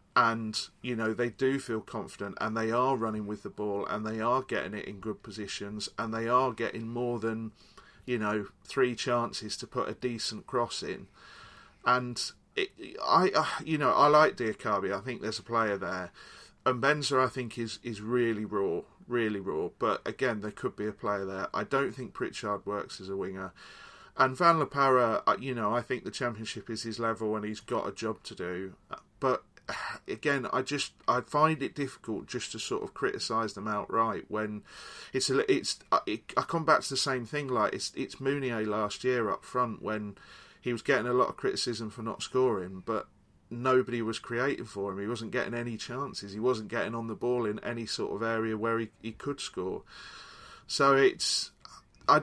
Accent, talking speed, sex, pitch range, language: British, 200 wpm, male, 110-130 Hz, English